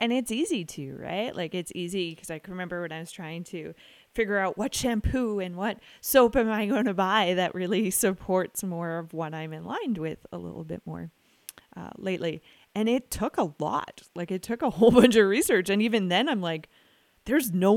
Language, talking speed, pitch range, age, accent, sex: English, 220 wpm, 175-225 Hz, 20-39, American, female